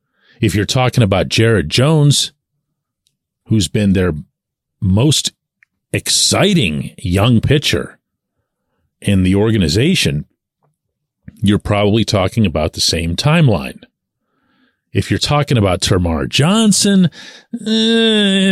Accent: American